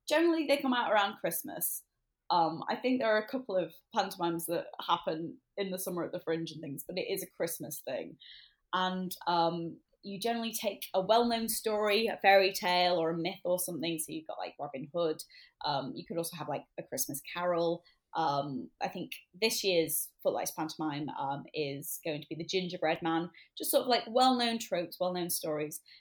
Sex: female